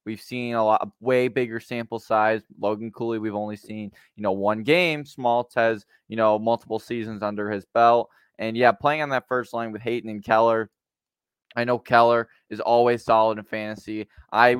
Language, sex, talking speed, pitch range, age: English, male, 195 wpm, 105-120 Hz, 20-39